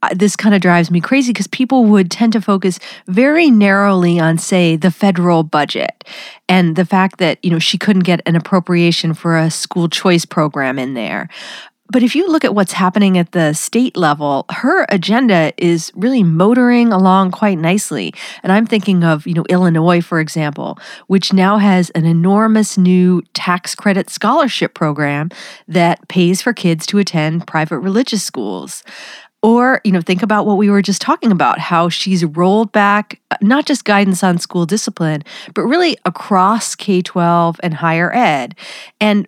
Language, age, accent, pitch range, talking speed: English, 40-59, American, 175-215 Hz, 175 wpm